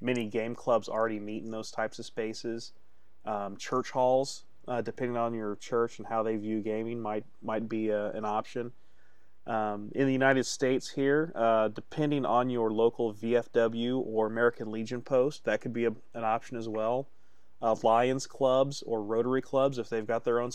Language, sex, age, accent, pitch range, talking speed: English, male, 30-49, American, 105-125 Hz, 185 wpm